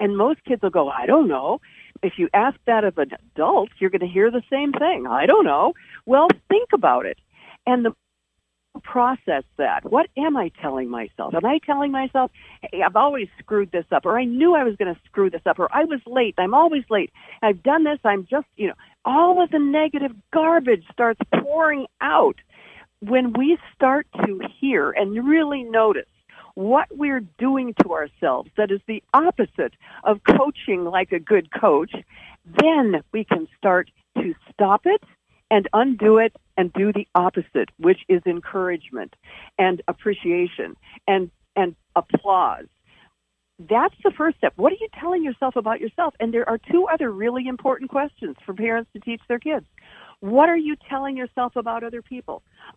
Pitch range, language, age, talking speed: 205-290 Hz, English, 60-79, 180 wpm